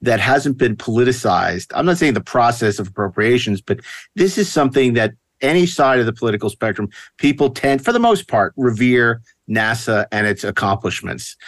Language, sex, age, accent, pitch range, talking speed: English, male, 50-69, American, 110-125 Hz, 170 wpm